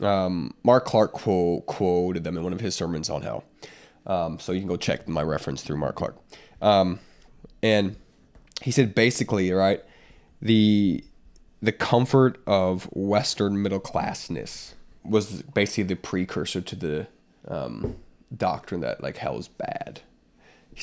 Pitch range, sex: 95-115 Hz, male